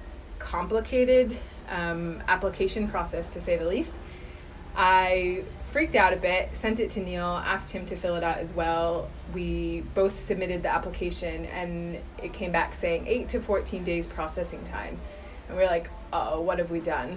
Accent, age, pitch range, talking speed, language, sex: American, 20-39, 165-195 Hz, 170 wpm, English, female